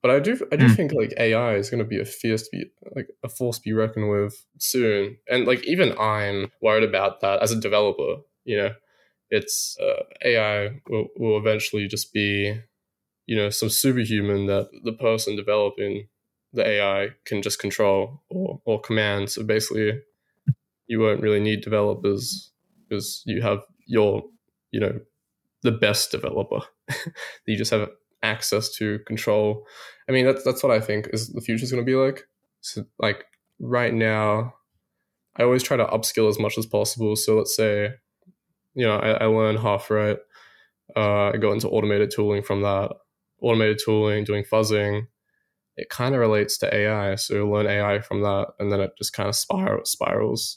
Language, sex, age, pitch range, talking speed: English, male, 10-29, 105-120 Hz, 180 wpm